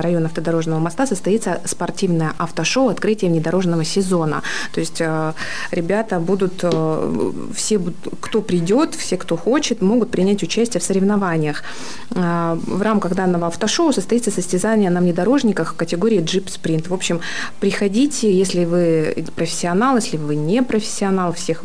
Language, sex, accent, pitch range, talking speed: Russian, female, native, 165-210 Hz, 130 wpm